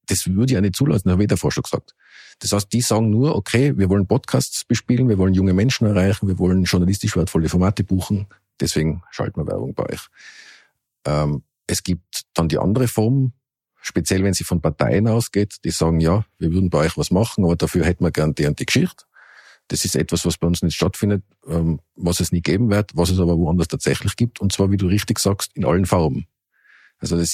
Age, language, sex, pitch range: 50-69, German, male, 85-100 Hz